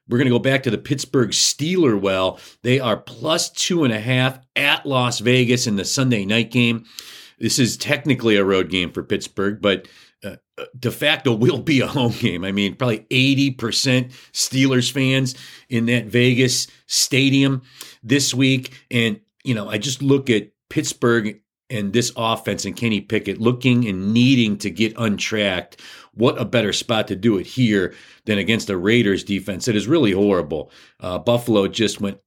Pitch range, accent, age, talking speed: 100-130 Hz, American, 40-59, 175 wpm